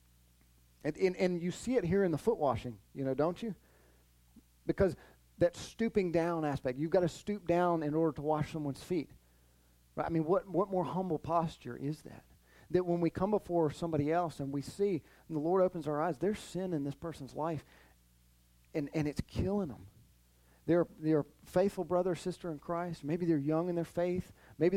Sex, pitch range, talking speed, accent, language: male, 115-170 Hz, 200 wpm, American, English